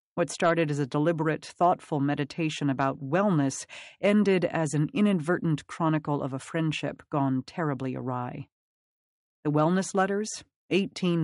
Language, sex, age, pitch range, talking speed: English, female, 40-59, 140-175 Hz, 130 wpm